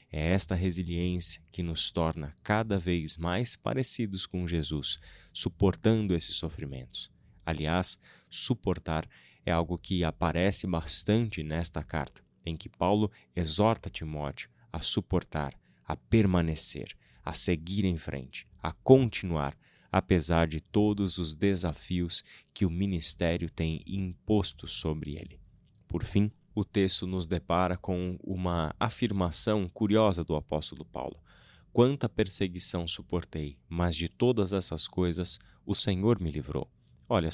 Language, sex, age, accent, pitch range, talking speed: Portuguese, male, 20-39, Brazilian, 80-100 Hz, 125 wpm